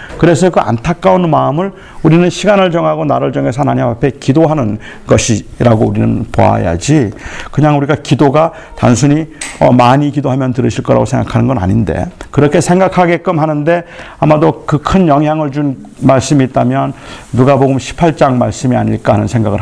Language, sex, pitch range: Korean, male, 125-160 Hz